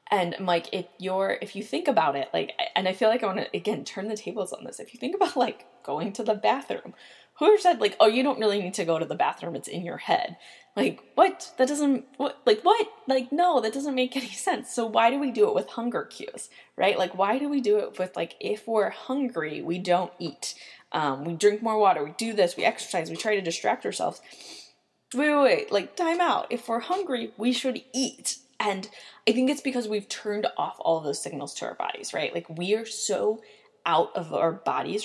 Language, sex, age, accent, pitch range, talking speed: English, female, 10-29, American, 185-265 Hz, 235 wpm